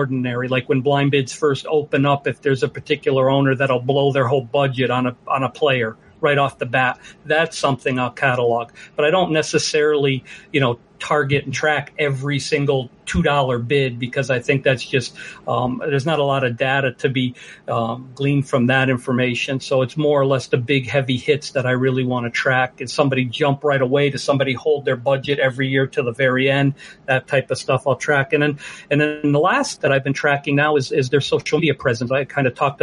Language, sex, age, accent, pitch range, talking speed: English, male, 50-69, American, 135-150 Hz, 220 wpm